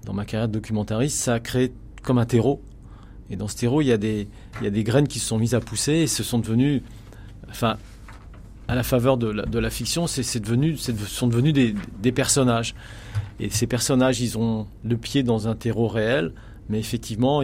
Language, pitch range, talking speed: French, 110-130 Hz, 225 wpm